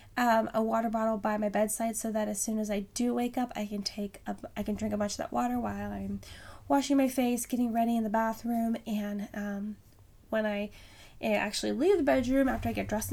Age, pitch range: 10-29, 210-255 Hz